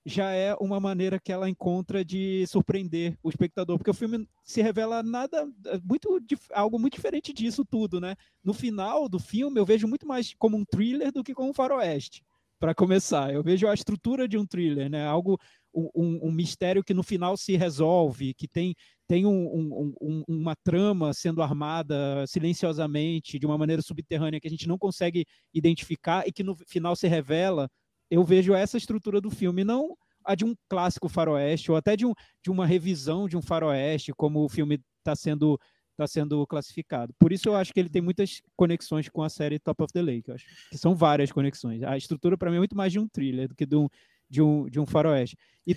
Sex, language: male, Portuguese